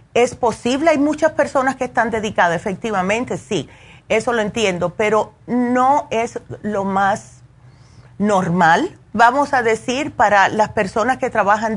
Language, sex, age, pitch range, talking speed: Spanish, female, 40-59, 190-250 Hz, 140 wpm